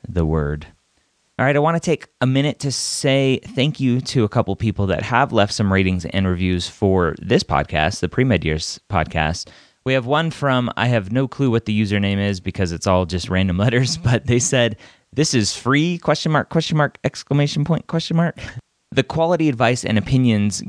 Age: 30-49